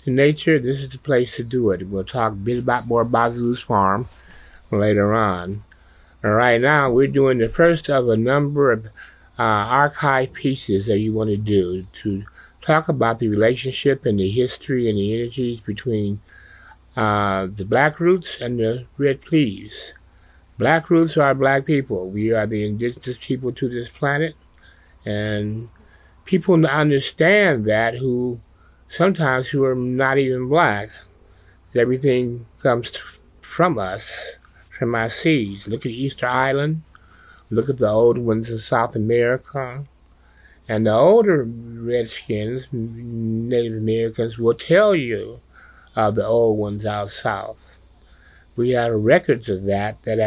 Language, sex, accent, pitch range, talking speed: English, male, American, 105-135 Hz, 145 wpm